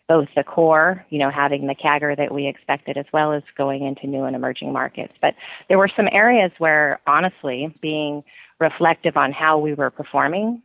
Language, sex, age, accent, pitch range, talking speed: English, female, 30-49, American, 140-160 Hz, 190 wpm